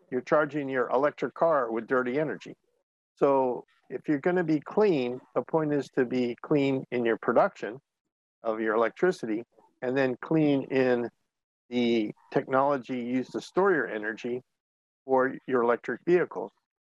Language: English